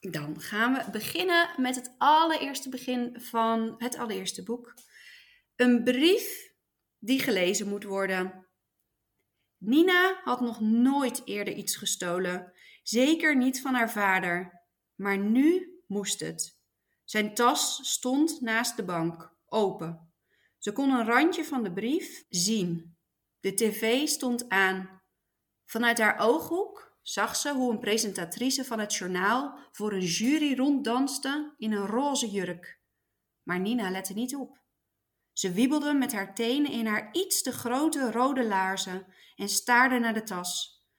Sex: female